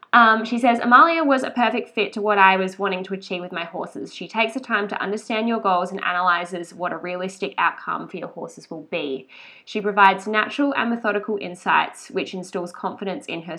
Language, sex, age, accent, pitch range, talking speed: English, female, 10-29, Australian, 190-230 Hz, 210 wpm